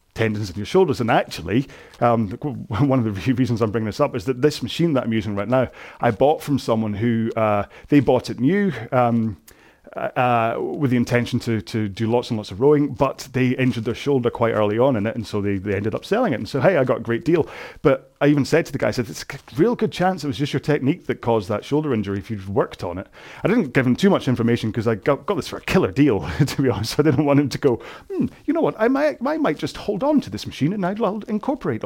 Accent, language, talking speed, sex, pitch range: British, English, 270 wpm, male, 110-145 Hz